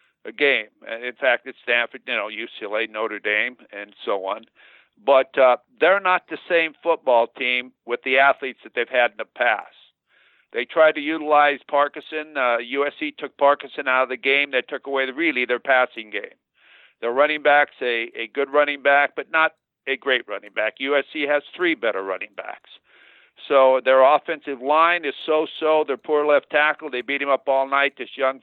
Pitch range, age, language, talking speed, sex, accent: 130-155 Hz, 60-79, English, 190 wpm, male, American